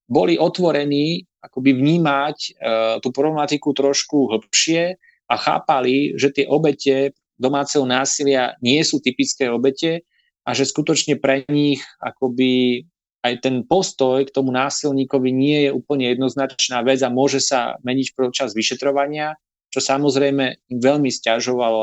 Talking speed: 130 wpm